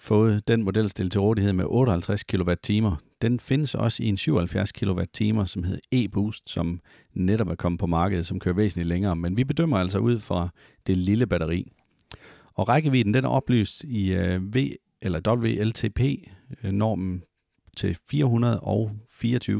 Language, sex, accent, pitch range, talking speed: Danish, male, native, 90-115 Hz, 150 wpm